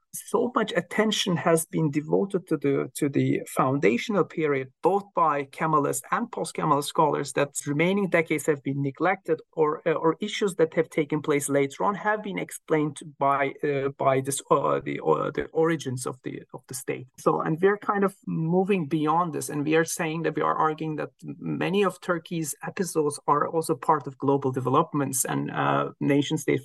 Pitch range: 140-180 Hz